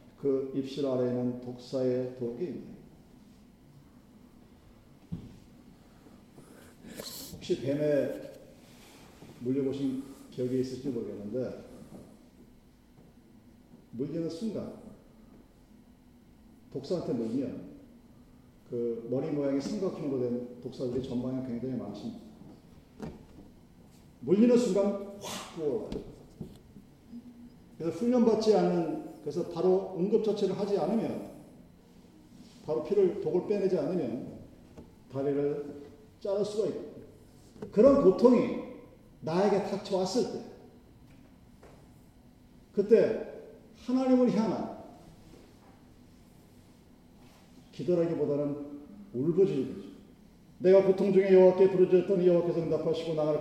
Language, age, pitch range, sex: Korean, 40-59, 140-210 Hz, male